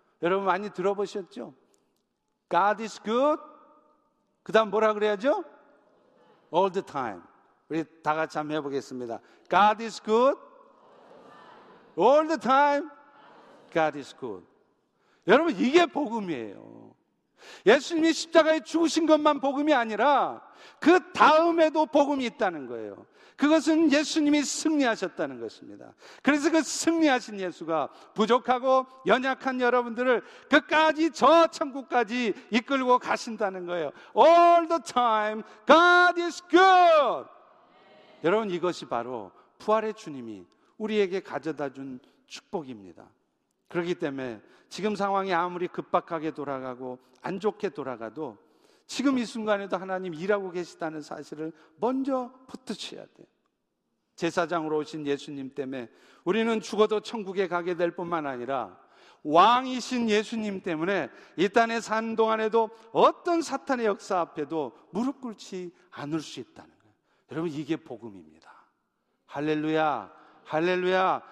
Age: 50-69